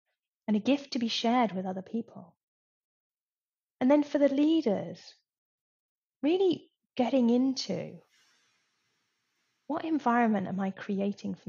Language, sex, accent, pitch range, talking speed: English, female, British, 190-265 Hz, 120 wpm